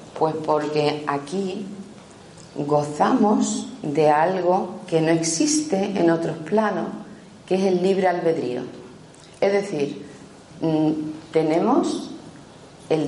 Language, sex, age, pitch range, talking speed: Spanish, female, 40-59, 145-195 Hz, 95 wpm